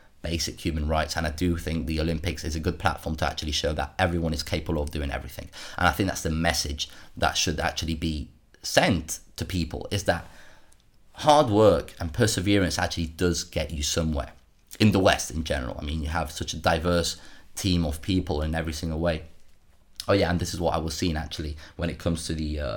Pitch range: 80-90 Hz